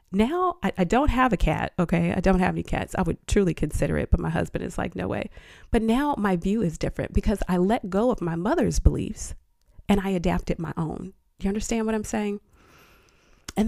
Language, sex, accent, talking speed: English, female, American, 220 wpm